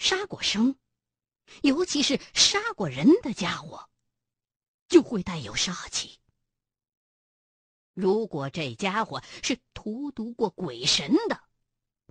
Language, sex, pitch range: Chinese, female, 215-345 Hz